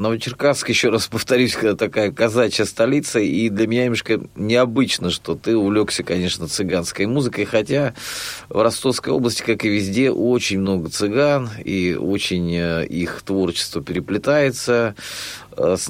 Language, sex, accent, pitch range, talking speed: Russian, male, native, 95-125 Hz, 130 wpm